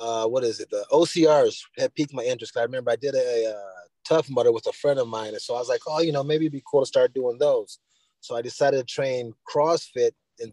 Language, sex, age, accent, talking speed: English, male, 20-39, American, 260 wpm